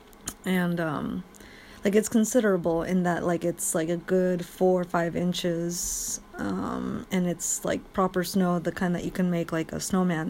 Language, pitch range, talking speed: English, 170-195 Hz, 180 wpm